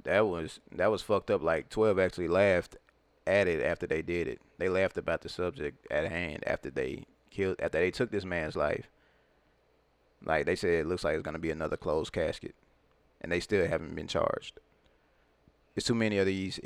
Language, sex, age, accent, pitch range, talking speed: English, male, 20-39, American, 85-95 Hz, 200 wpm